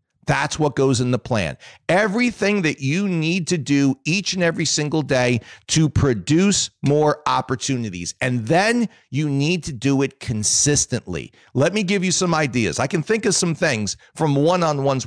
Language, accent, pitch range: English, American, 125-175 Hz